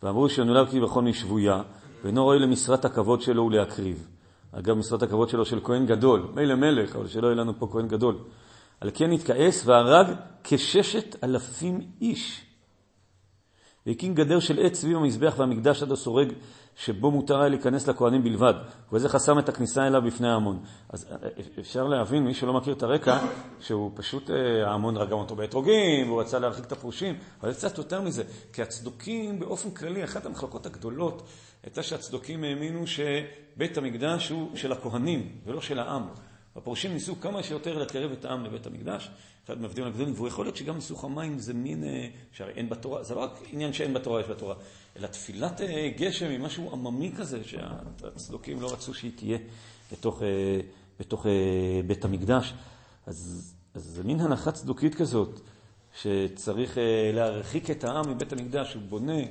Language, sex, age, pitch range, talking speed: Hebrew, male, 40-59, 110-145 Hz, 155 wpm